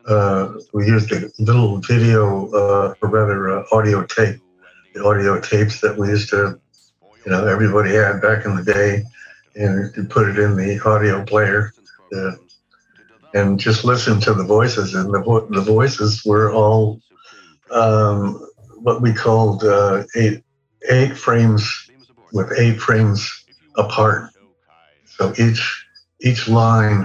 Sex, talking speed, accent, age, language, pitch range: male, 145 wpm, American, 60-79, English, 100-110 Hz